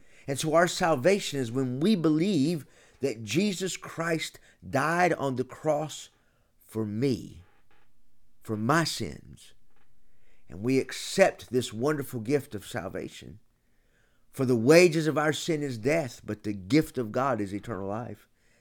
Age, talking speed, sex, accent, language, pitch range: 50-69, 140 wpm, male, American, English, 115-150 Hz